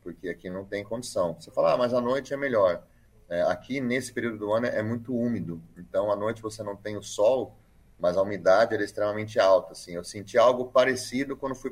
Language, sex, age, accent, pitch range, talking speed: Portuguese, male, 30-49, Brazilian, 95-120 Hz, 220 wpm